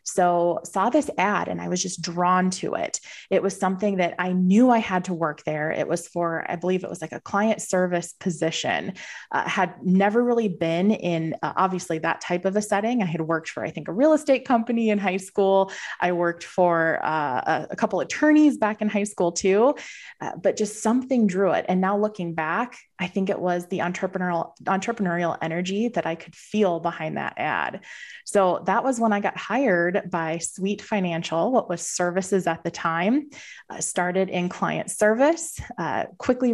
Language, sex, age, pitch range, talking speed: English, female, 20-39, 175-215 Hz, 195 wpm